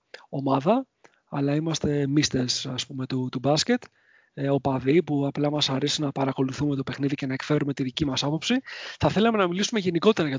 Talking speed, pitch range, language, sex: 180 wpm, 140-175 Hz, English, male